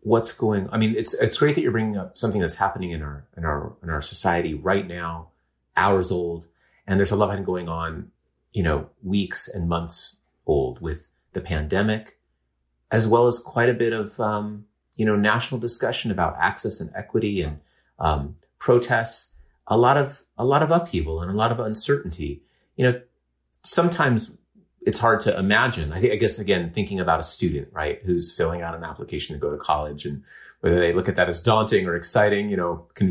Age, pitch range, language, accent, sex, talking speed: 30-49, 80-110 Hz, English, American, male, 200 wpm